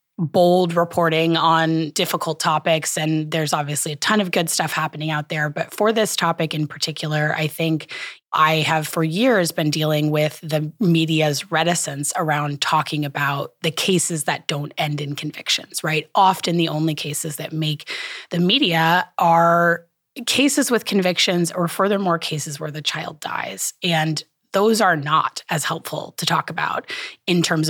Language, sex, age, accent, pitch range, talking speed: English, female, 20-39, American, 155-180 Hz, 160 wpm